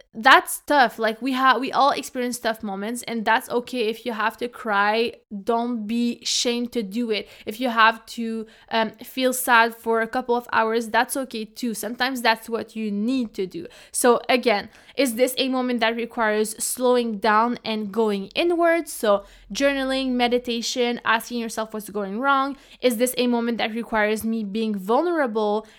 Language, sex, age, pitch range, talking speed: English, female, 20-39, 220-250 Hz, 175 wpm